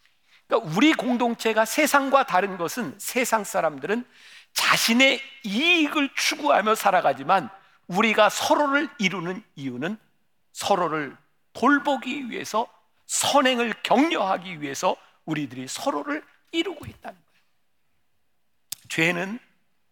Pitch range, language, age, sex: 175-265 Hz, Korean, 50-69, male